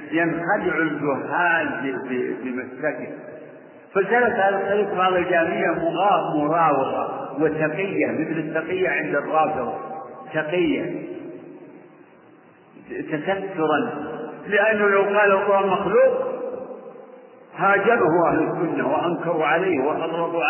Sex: male